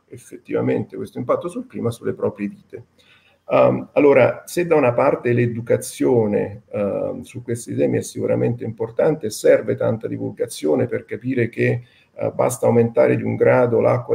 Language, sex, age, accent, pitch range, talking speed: Italian, male, 50-69, native, 115-145 Hz, 135 wpm